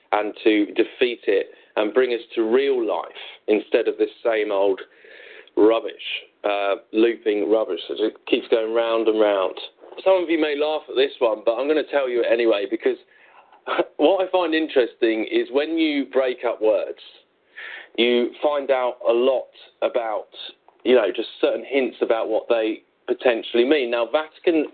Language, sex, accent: English, male, British